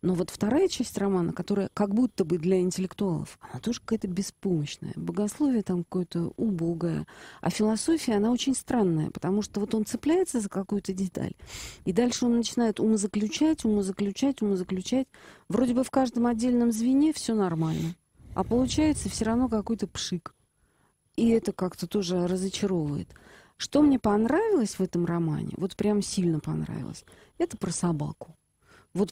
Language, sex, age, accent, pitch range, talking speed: Russian, female, 40-59, native, 175-225 Hz, 150 wpm